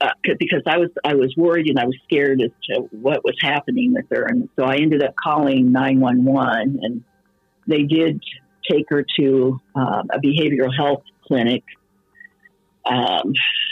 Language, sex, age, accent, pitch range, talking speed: English, female, 50-69, American, 130-170 Hz, 170 wpm